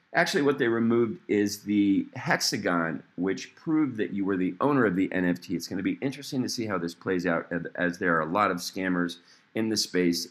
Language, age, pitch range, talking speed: English, 40-59, 90-140 Hz, 220 wpm